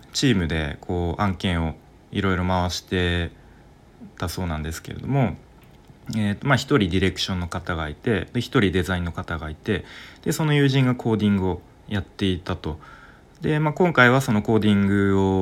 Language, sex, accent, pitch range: Japanese, male, native, 85-110 Hz